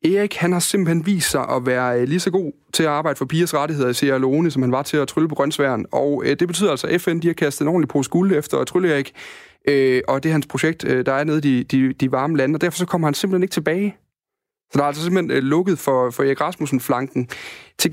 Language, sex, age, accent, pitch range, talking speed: Danish, male, 30-49, native, 130-165 Hz, 270 wpm